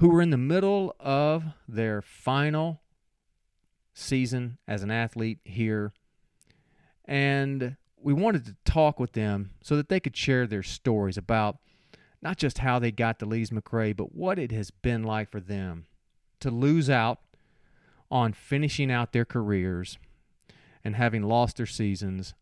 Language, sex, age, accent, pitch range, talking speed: English, male, 40-59, American, 105-135 Hz, 155 wpm